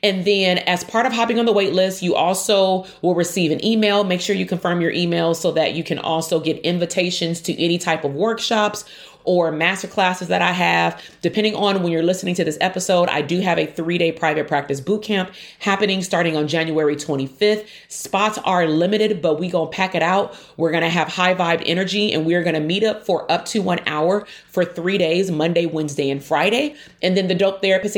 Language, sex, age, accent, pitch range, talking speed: English, female, 30-49, American, 160-200 Hz, 210 wpm